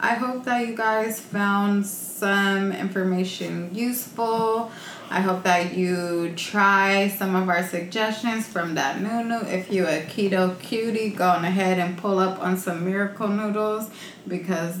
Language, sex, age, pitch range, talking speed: English, female, 20-39, 170-195 Hz, 145 wpm